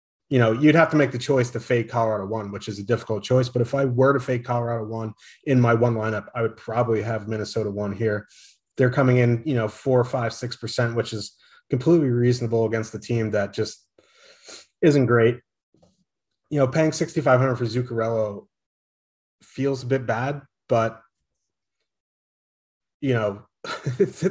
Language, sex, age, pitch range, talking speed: English, male, 30-49, 110-135 Hz, 170 wpm